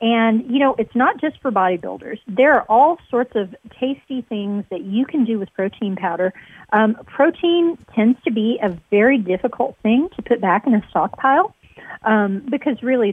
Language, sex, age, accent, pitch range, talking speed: English, female, 40-59, American, 205-255 Hz, 185 wpm